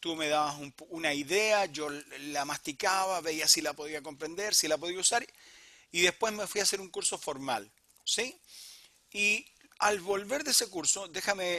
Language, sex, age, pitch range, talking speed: Spanish, male, 40-59, 160-215 Hz, 185 wpm